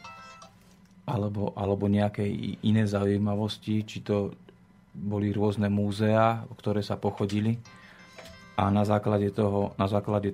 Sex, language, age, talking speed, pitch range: male, Slovak, 40-59, 110 wpm, 100-110 Hz